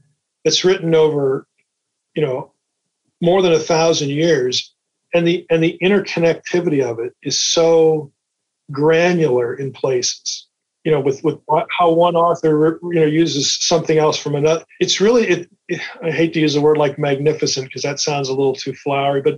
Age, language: 40-59, English